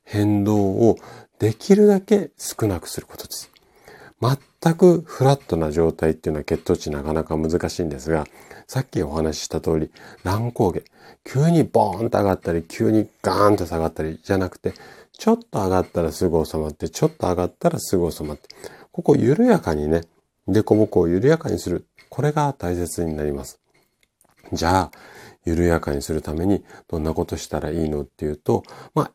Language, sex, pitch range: Japanese, male, 80-120 Hz